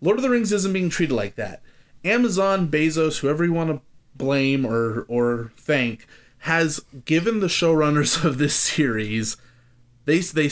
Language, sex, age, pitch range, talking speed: English, male, 30-49, 120-155 Hz, 160 wpm